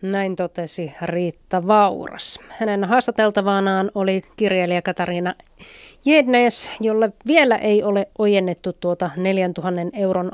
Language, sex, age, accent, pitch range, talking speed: Finnish, female, 30-49, native, 180-210 Hz, 105 wpm